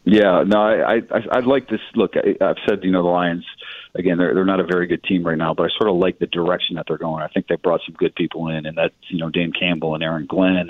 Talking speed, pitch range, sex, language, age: 290 wpm, 85-100 Hz, male, English, 40-59